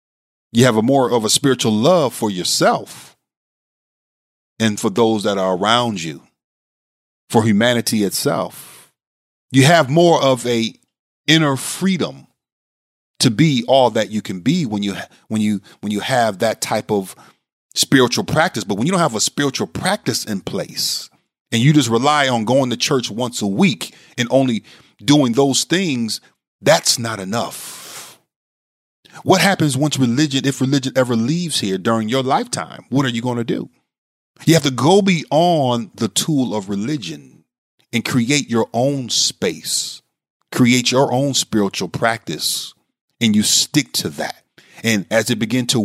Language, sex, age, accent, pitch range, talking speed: English, male, 40-59, American, 110-140 Hz, 155 wpm